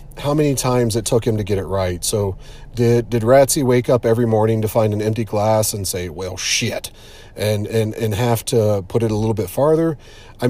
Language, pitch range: English, 100-125 Hz